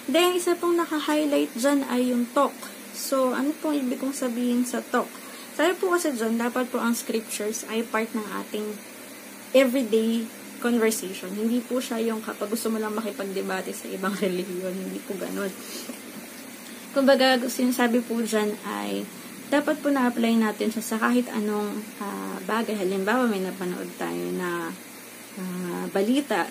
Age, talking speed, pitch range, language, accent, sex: 20-39, 150 wpm, 210-265 Hz, Filipino, native, female